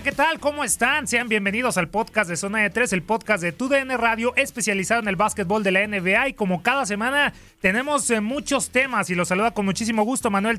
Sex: male